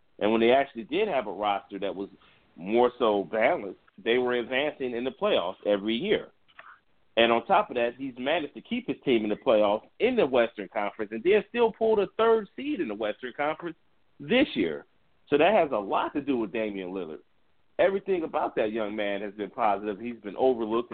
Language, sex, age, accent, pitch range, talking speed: English, male, 40-59, American, 110-165 Hz, 210 wpm